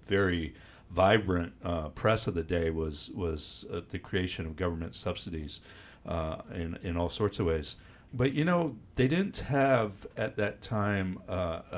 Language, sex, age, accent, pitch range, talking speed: English, male, 50-69, American, 85-105 Hz, 165 wpm